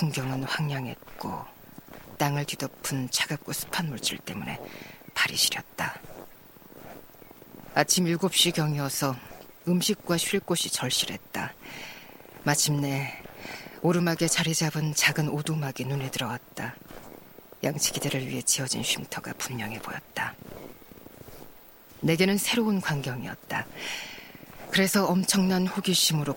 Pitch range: 135-180 Hz